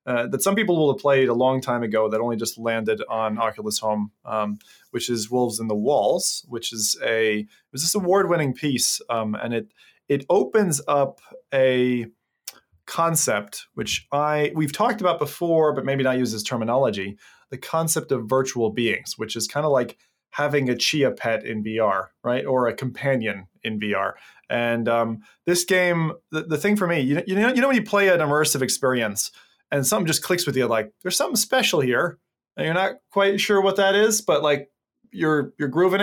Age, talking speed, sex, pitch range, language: 20-39, 200 wpm, male, 120-170 Hz, English